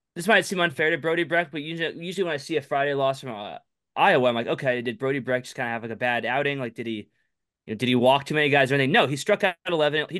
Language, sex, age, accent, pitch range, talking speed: English, male, 20-39, American, 120-145 Hz, 305 wpm